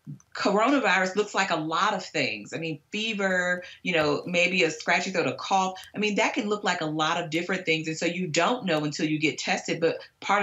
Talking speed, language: 230 wpm, English